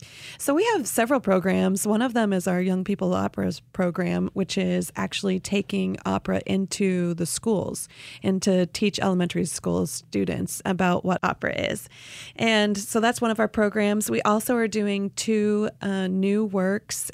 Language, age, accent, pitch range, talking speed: English, 30-49, American, 125-200 Hz, 165 wpm